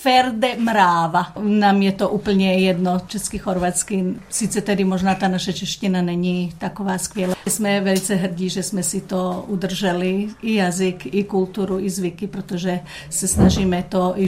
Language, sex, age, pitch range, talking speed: Czech, female, 50-69, 180-200 Hz, 155 wpm